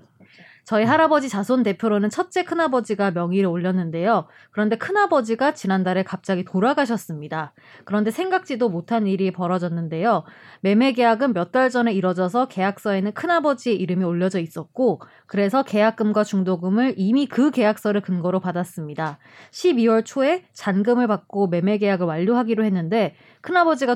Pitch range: 185-255 Hz